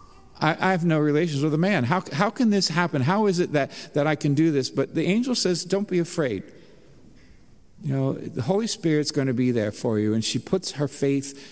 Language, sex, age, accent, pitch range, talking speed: English, male, 50-69, American, 115-170 Hz, 230 wpm